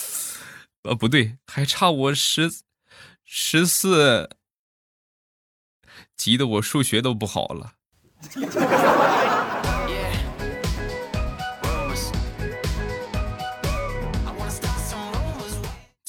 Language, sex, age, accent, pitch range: Chinese, male, 20-39, native, 85-115 Hz